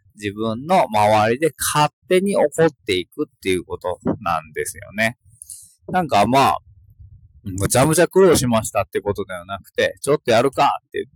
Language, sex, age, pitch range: Japanese, male, 20-39, 105-150 Hz